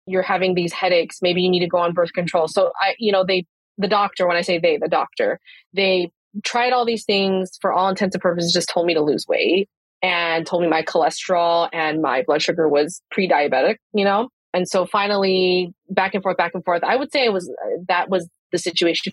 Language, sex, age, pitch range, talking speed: English, female, 20-39, 170-195 Hz, 225 wpm